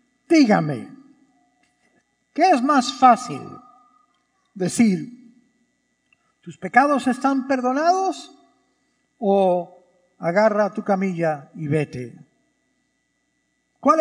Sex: male